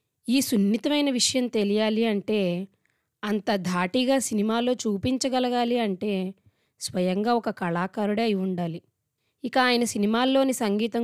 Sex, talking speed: female, 105 wpm